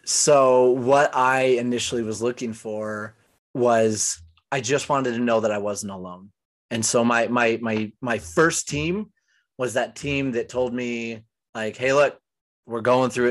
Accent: American